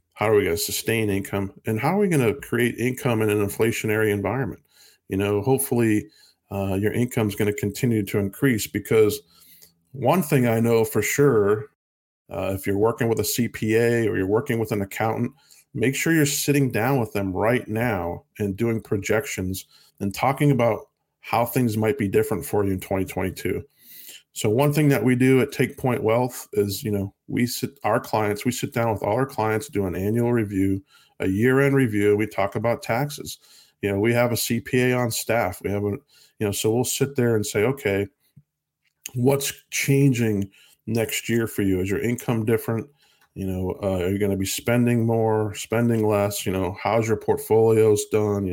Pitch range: 100-125 Hz